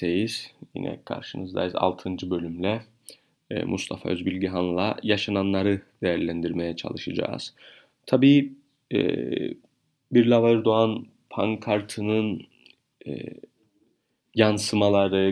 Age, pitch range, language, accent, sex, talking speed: 30-49, 100-115 Hz, Turkish, native, male, 60 wpm